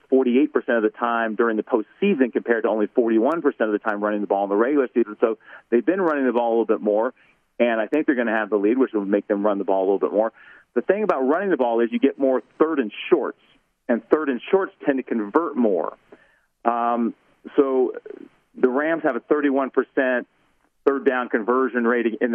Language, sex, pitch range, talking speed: English, male, 105-130 Hz, 225 wpm